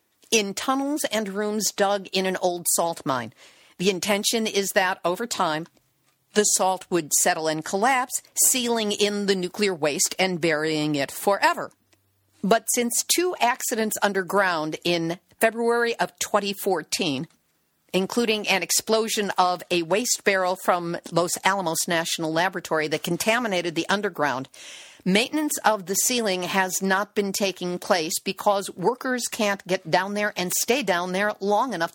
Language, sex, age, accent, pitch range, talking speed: English, female, 50-69, American, 175-225 Hz, 145 wpm